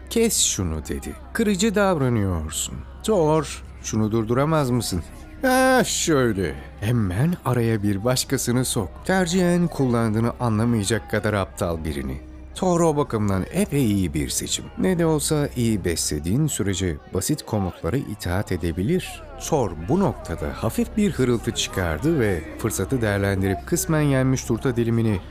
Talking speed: 125 wpm